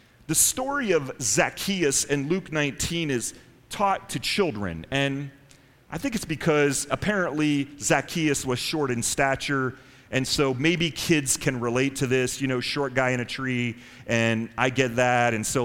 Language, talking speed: English, 165 wpm